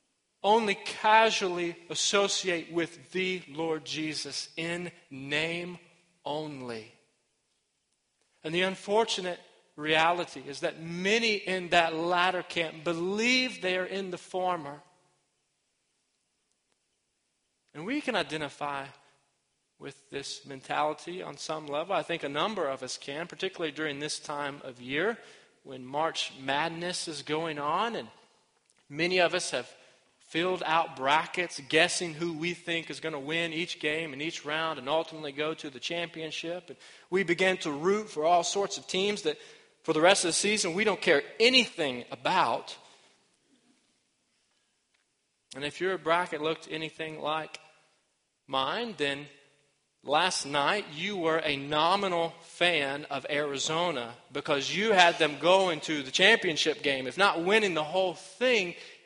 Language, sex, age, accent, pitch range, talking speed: English, male, 40-59, American, 150-180 Hz, 140 wpm